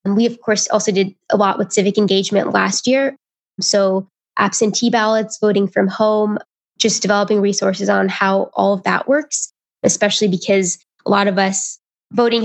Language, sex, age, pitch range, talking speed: English, female, 10-29, 195-220 Hz, 165 wpm